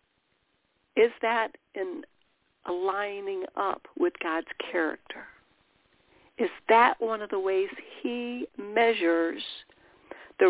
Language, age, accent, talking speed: English, 60-79, American, 95 wpm